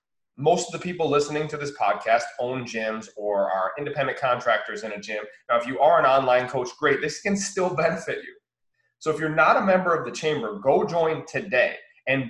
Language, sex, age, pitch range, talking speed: English, male, 20-39, 130-180 Hz, 210 wpm